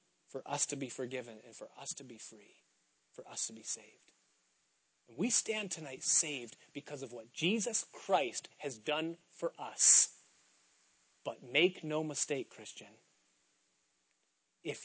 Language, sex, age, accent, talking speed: English, male, 30-49, American, 145 wpm